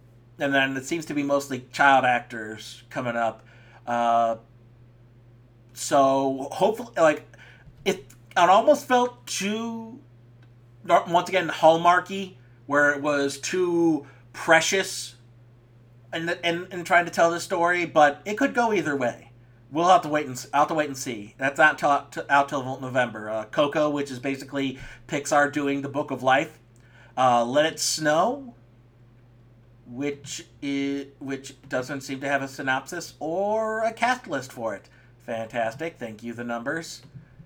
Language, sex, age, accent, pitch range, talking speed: English, male, 40-59, American, 120-150 Hz, 145 wpm